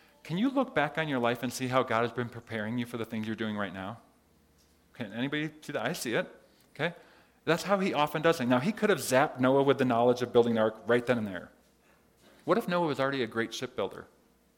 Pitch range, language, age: 120-160 Hz, English, 40-59